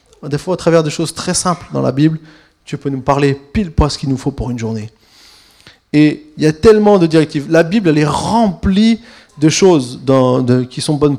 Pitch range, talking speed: 125-165 Hz, 230 wpm